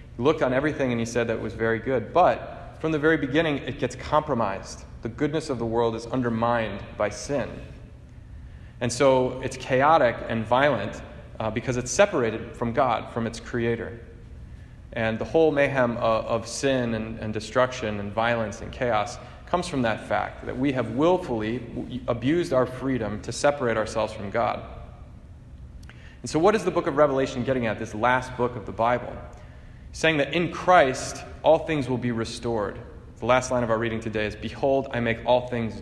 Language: English